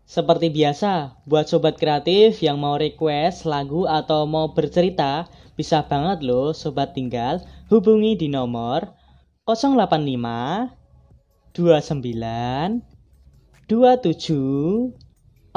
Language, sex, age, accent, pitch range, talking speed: Indonesian, female, 10-29, native, 140-200 Hz, 90 wpm